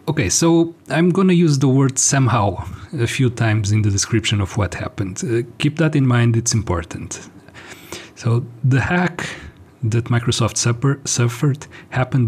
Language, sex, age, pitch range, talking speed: English, male, 40-59, 110-135 Hz, 160 wpm